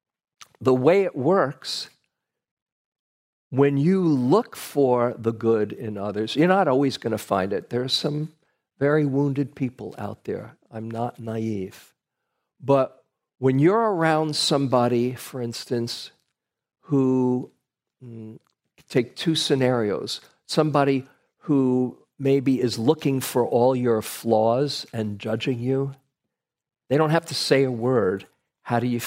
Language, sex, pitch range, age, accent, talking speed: English, male, 115-140 Hz, 50-69, American, 130 wpm